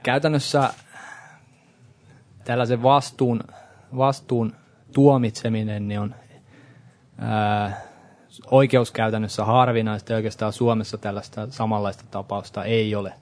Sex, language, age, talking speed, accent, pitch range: male, Finnish, 20-39, 75 wpm, native, 105-125 Hz